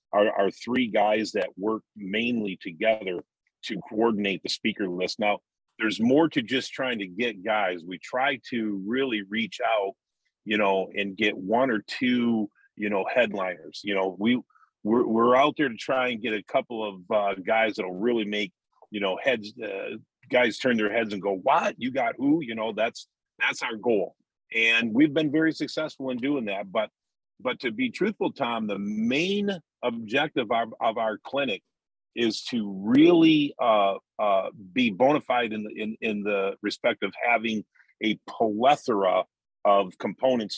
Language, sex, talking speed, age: English, male, 175 wpm, 40-59